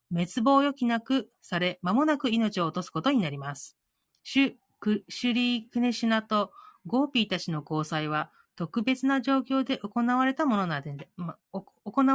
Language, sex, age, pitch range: Japanese, female, 40-59, 170-250 Hz